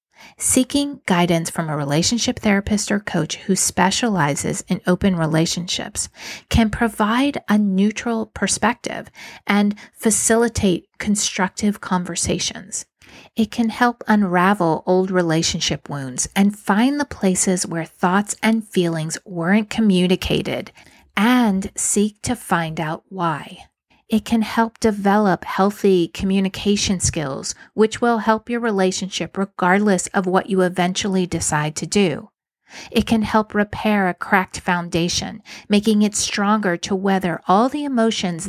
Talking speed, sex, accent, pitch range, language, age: 125 wpm, female, American, 180-220 Hz, English, 40-59